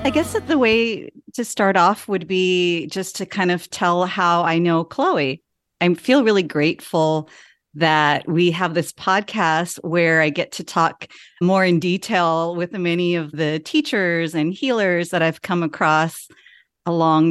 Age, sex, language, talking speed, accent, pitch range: 30-49, female, English, 165 wpm, American, 150-180 Hz